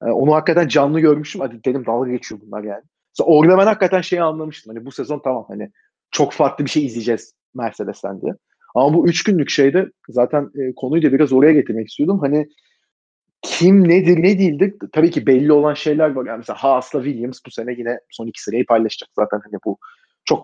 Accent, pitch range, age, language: native, 125-160 Hz, 30-49, Turkish